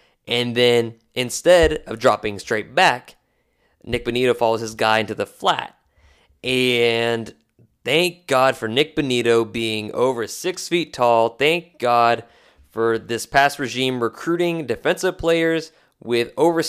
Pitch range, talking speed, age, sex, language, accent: 110-145 Hz, 135 wpm, 20-39, male, English, American